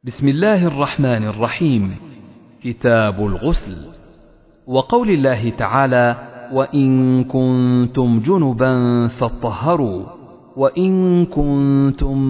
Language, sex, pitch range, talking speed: Arabic, male, 120-165 Hz, 75 wpm